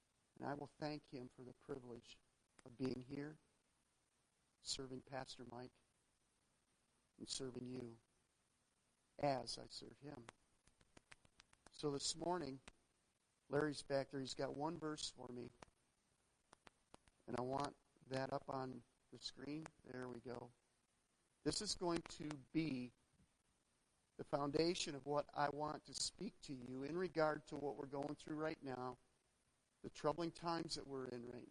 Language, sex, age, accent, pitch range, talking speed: English, male, 50-69, American, 125-170 Hz, 145 wpm